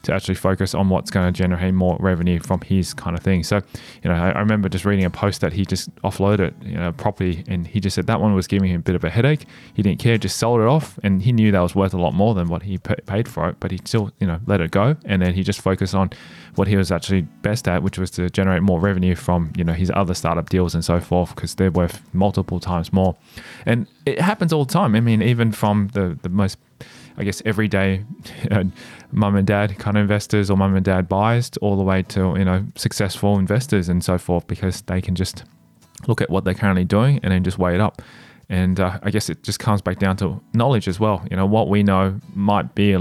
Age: 20-39